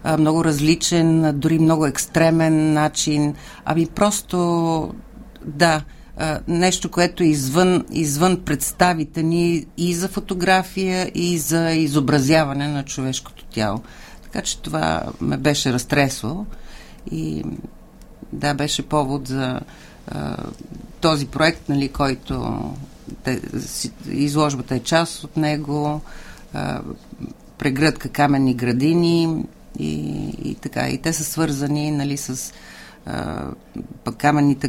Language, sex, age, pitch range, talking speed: Bulgarian, female, 50-69, 135-160 Hz, 100 wpm